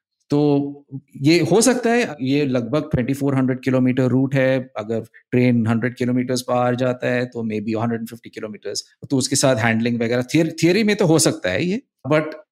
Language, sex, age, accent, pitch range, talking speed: Hindi, male, 50-69, native, 120-150 Hz, 160 wpm